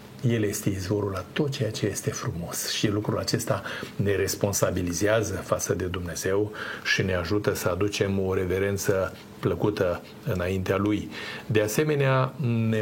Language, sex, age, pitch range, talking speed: Romanian, male, 50-69, 100-115 Hz, 140 wpm